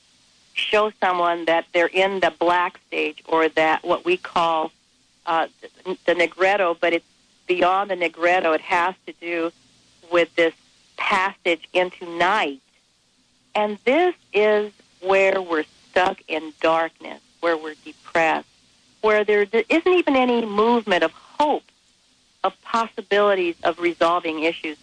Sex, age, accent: female, 50-69, American